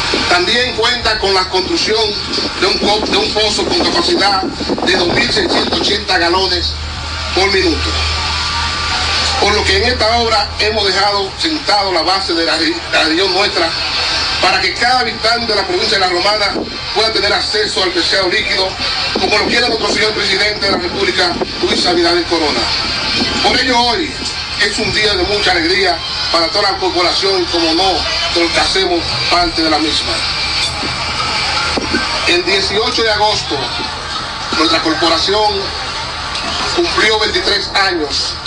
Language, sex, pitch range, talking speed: Spanish, male, 170-240 Hz, 145 wpm